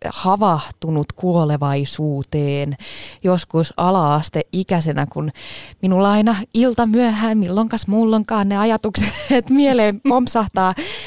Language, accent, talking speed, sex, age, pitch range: Finnish, native, 85 wpm, female, 20-39, 160-225 Hz